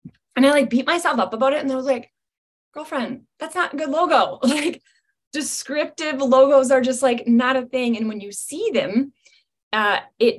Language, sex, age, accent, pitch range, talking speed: English, female, 10-29, American, 200-265 Hz, 195 wpm